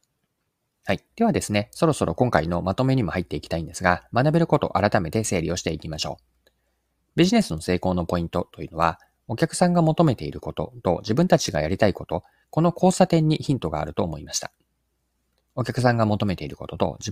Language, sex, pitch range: Japanese, male, 80-125 Hz